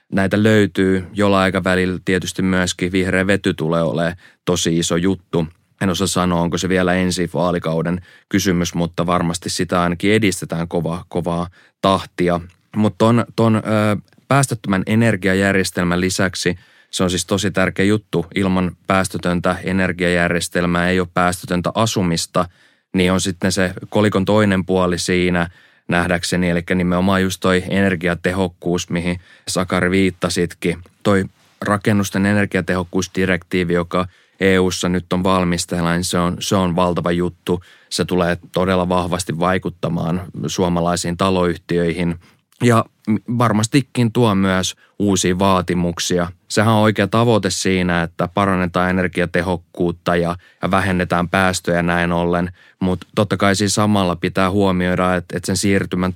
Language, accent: Finnish, native